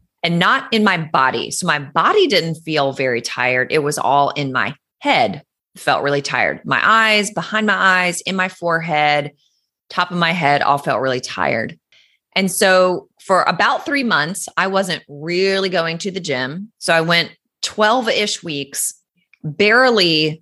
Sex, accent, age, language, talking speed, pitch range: female, American, 30-49, English, 165 wpm, 140-200 Hz